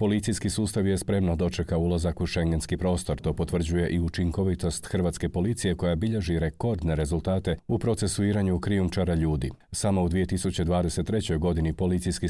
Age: 40-59